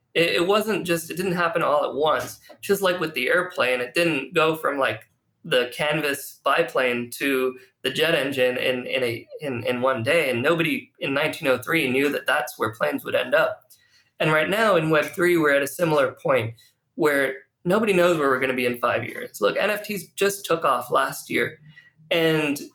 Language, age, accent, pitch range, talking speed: English, 20-39, American, 130-175 Hz, 190 wpm